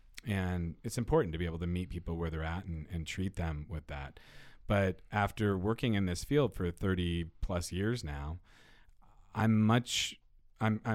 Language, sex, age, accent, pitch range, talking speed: English, male, 40-59, American, 85-100 Hz, 175 wpm